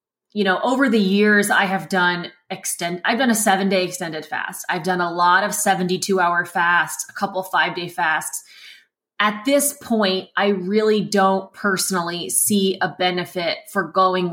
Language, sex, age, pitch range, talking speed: English, female, 20-39, 175-215 Hz, 170 wpm